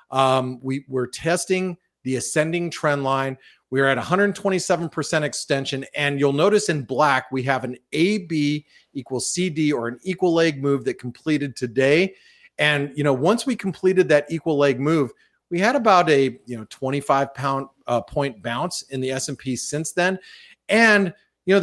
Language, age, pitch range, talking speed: English, 40-59, 135-175 Hz, 180 wpm